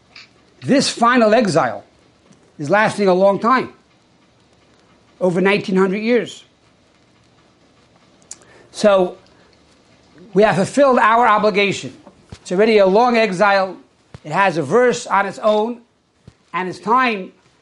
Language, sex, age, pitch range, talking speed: English, male, 60-79, 180-230 Hz, 110 wpm